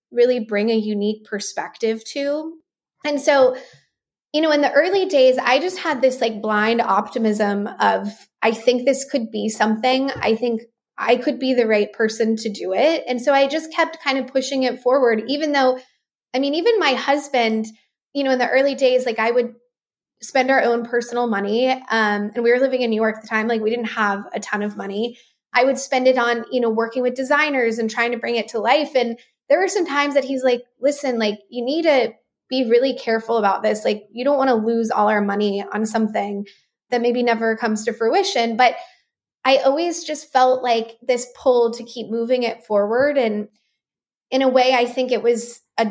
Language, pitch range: English, 220-270 Hz